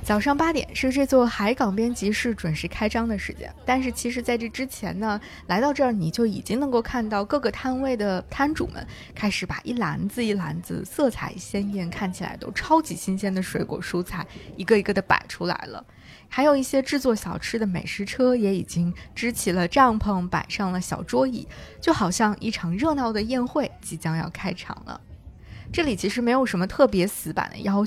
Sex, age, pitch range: female, 20-39, 185-250 Hz